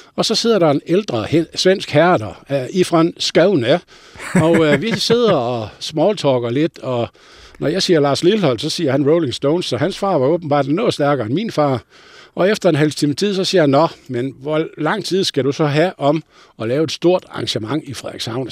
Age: 60-79